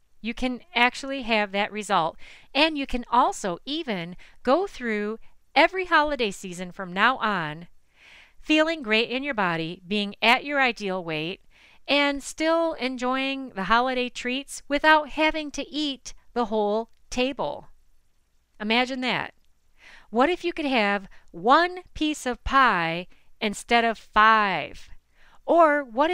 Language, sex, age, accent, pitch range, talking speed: English, female, 40-59, American, 205-285 Hz, 135 wpm